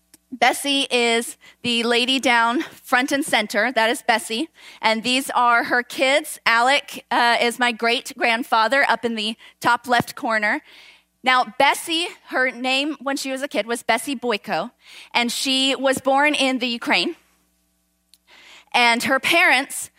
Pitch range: 235-280 Hz